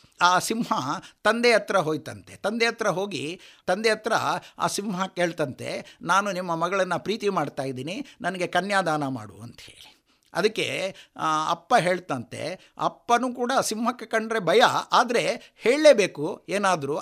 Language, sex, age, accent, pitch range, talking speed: Kannada, male, 50-69, native, 160-225 Hz, 120 wpm